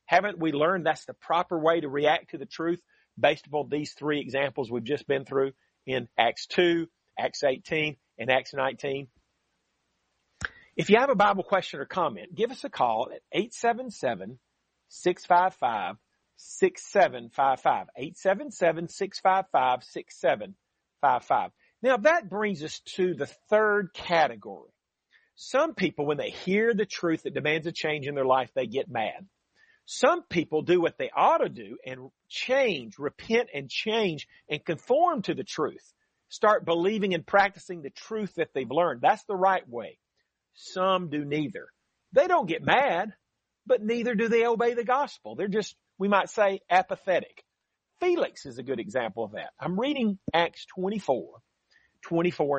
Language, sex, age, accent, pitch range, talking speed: English, male, 40-59, American, 150-215 Hz, 150 wpm